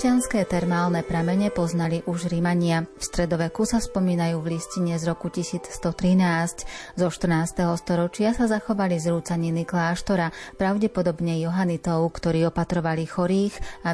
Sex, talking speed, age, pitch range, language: female, 120 wpm, 30-49, 160-185 Hz, Slovak